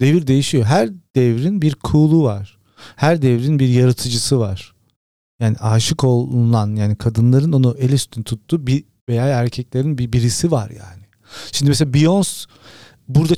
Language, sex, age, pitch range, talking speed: Turkish, male, 40-59, 110-135 Hz, 140 wpm